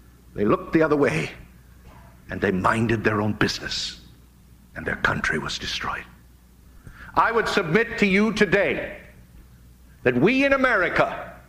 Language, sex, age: English, male, 60-79